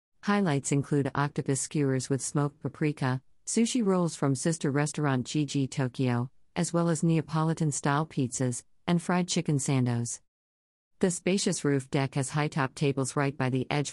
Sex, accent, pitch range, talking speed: female, American, 130-155 Hz, 145 wpm